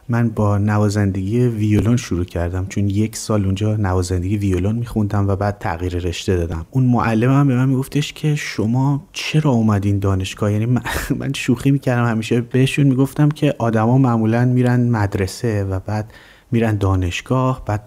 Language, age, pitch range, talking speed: Persian, 30-49, 100-125 Hz, 160 wpm